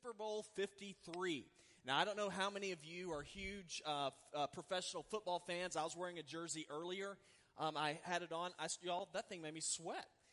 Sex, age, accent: male, 30-49, American